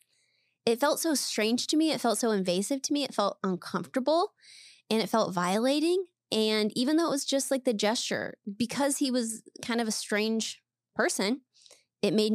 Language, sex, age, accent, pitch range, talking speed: English, female, 20-39, American, 190-250 Hz, 185 wpm